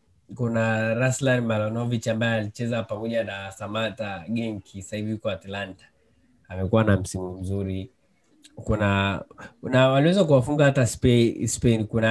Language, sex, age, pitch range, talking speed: Swahili, male, 20-39, 100-115 Hz, 105 wpm